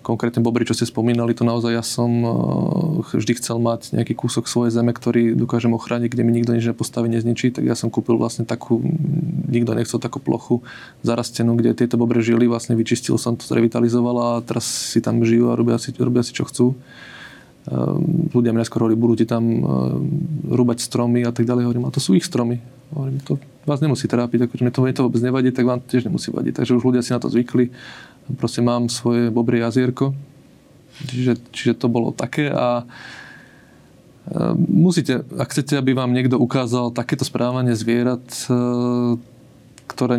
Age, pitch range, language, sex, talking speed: 20-39, 115-125 Hz, Slovak, male, 180 wpm